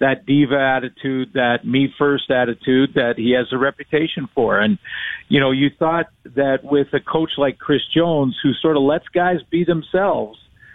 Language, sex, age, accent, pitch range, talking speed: English, male, 50-69, American, 135-165 Hz, 175 wpm